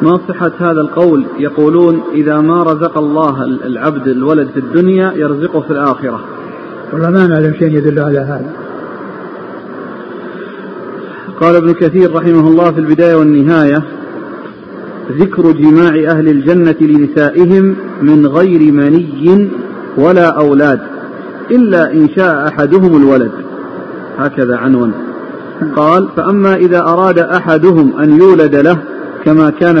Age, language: 40-59, Arabic